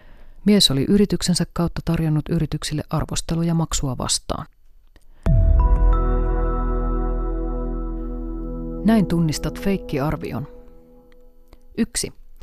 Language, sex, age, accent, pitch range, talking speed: Finnish, female, 30-49, native, 125-170 Hz, 65 wpm